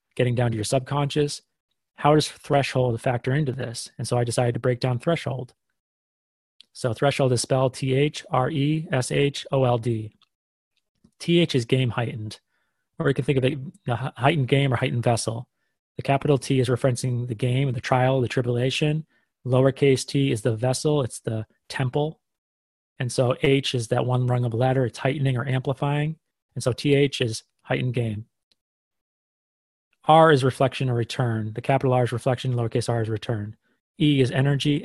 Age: 30-49